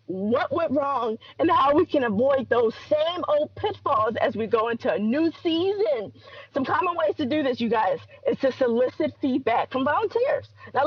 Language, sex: English, female